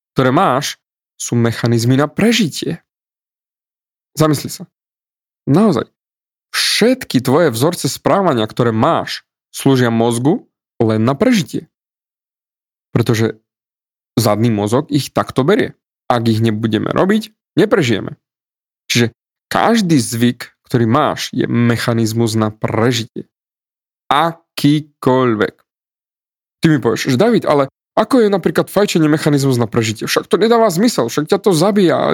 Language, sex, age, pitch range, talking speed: Slovak, male, 20-39, 120-165 Hz, 115 wpm